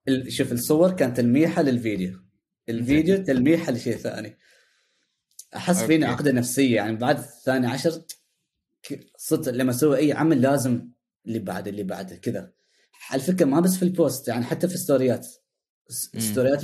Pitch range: 110-135 Hz